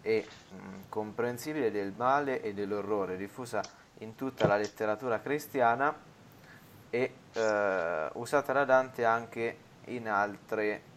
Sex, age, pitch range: male, 20-39, 105-125 Hz